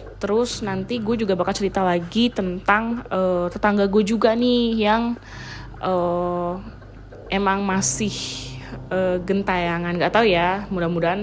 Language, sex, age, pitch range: Indonesian, female, 20-39, 180-230 Hz